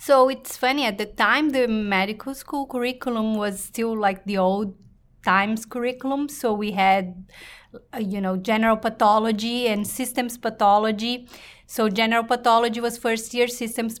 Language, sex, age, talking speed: English, female, 30-49, 150 wpm